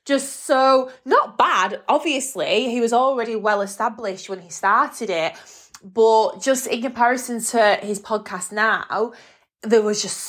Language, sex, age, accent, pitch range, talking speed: English, female, 20-39, British, 195-255 Hz, 140 wpm